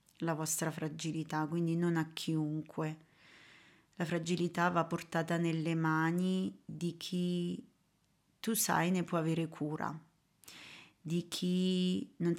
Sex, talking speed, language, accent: female, 115 wpm, Italian, native